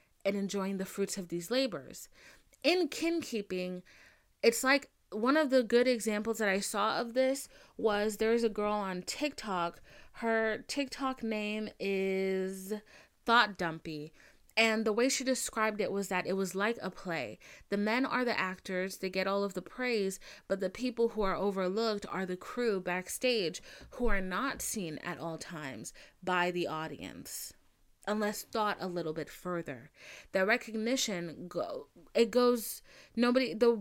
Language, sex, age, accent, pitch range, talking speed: English, female, 30-49, American, 180-235 Hz, 160 wpm